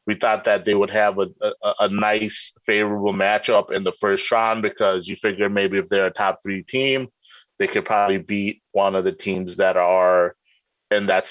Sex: male